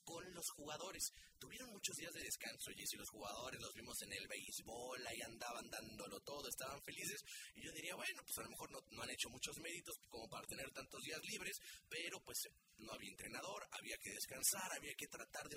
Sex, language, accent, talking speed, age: male, Spanish, Mexican, 210 wpm, 30-49